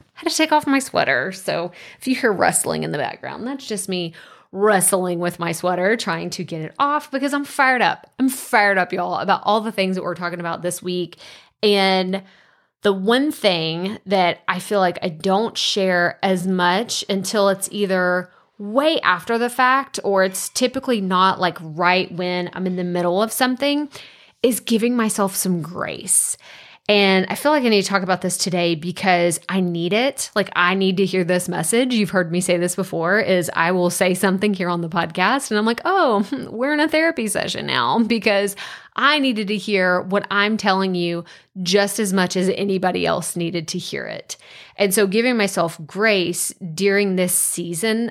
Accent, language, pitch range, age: American, English, 180-225 Hz, 20-39